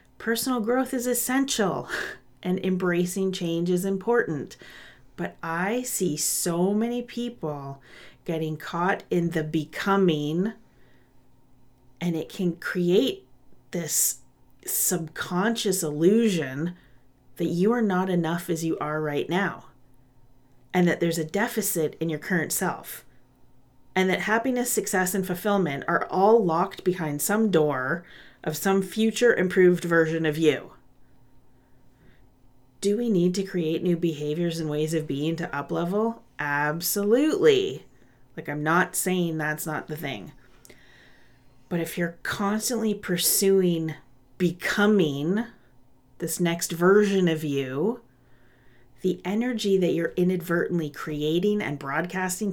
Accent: American